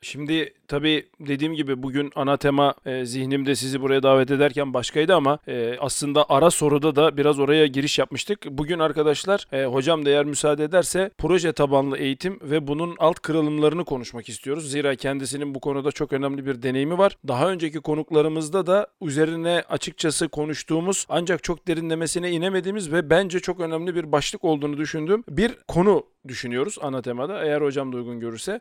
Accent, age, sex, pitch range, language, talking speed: native, 40-59, male, 145-180 Hz, Turkish, 155 wpm